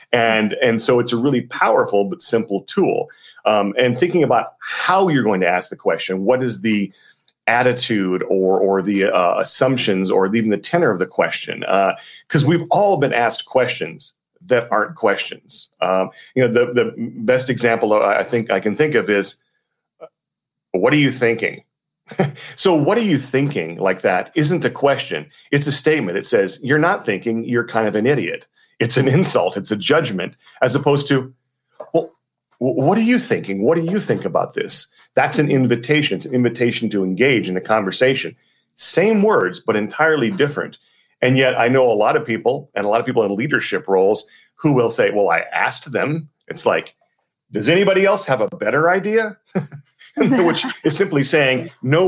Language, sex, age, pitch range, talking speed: English, male, 40-59, 110-150 Hz, 185 wpm